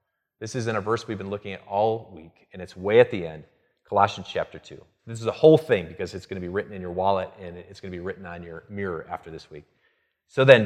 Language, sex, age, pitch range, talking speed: English, male, 30-49, 90-115 Hz, 270 wpm